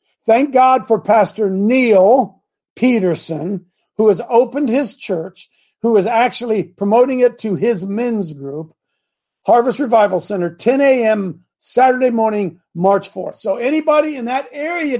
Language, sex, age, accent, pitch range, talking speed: English, male, 50-69, American, 180-240 Hz, 135 wpm